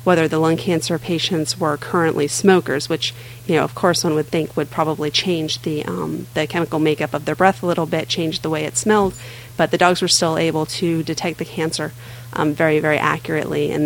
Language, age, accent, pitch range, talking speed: English, 30-49, American, 150-175 Hz, 215 wpm